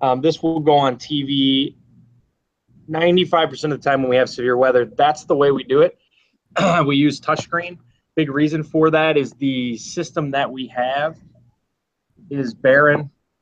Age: 20-39